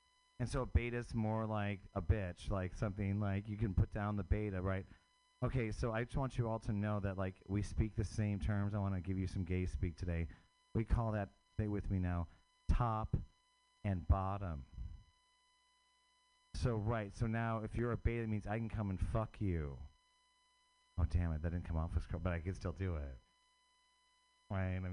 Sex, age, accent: male, 40-59, American